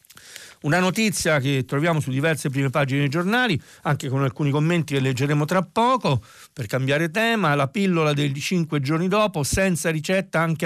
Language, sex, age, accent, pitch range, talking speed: Italian, male, 50-69, native, 135-170 Hz, 170 wpm